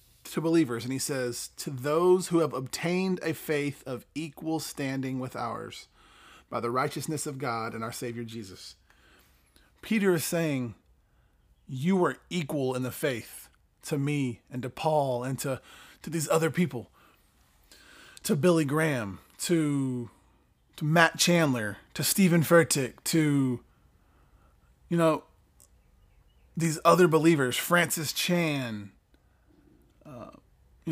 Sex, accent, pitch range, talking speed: male, American, 130-165 Hz, 125 wpm